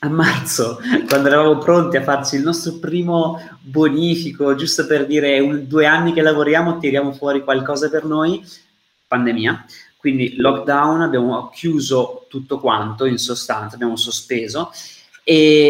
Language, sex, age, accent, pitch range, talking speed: Italian, male, 20-39, native, 120-145 Hz, 135 wpm